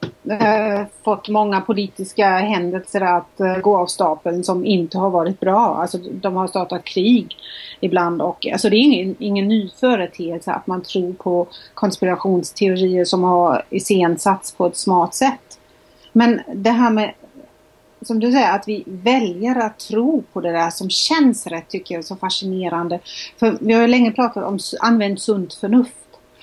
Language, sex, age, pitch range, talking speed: Swedish, female, 30-49, 185-230 Hz, 165 wpm